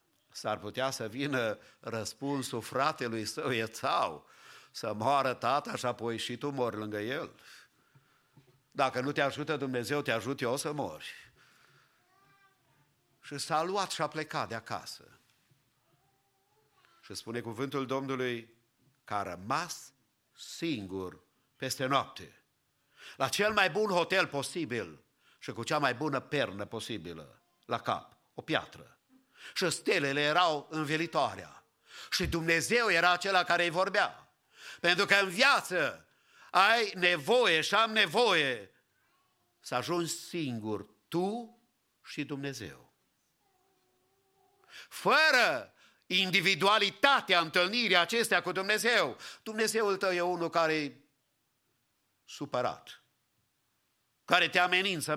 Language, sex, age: English, male, 50-69